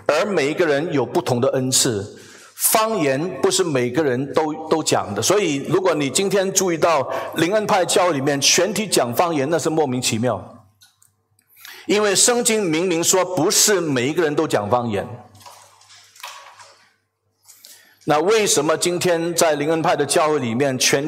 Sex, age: male, 50-69